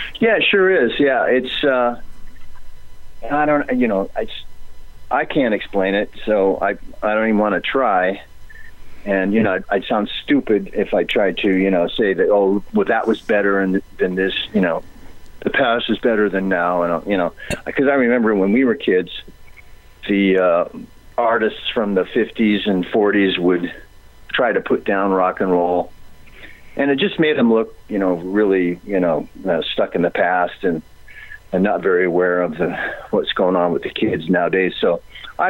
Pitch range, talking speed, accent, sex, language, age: 90-110 Hz, 190 wpm, American, male, English, 40-59